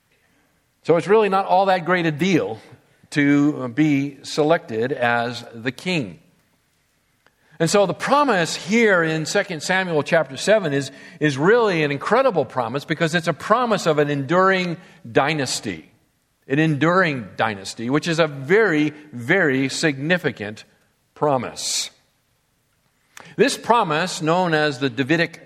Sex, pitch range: male, 140-180 Hz